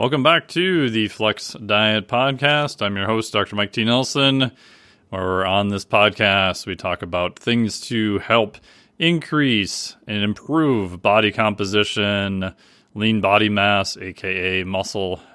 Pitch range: 100-120 Hz